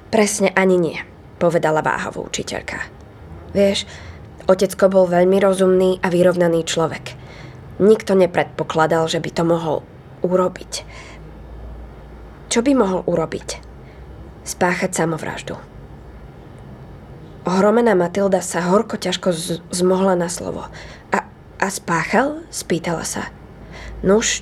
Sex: female